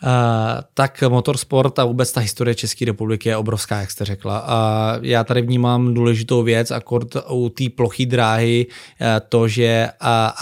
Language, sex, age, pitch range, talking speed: Czech, male, 20-39, 115-125 Hz, 165 wpm